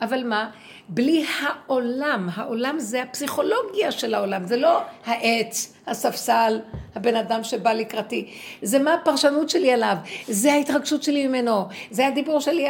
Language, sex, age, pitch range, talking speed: Hebrew, female, 60-79, 185-250 Hz, 135 wpm